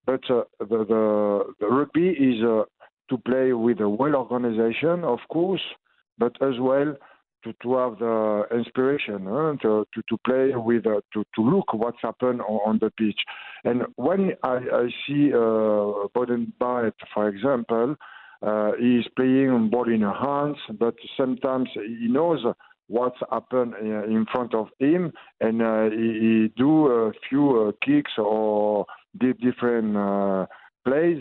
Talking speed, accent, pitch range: 150 wpm, French, 105-125 Hz